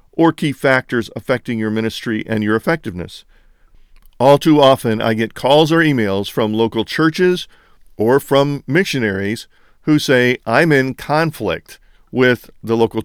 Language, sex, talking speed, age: English, male, 145 wpm, 50-69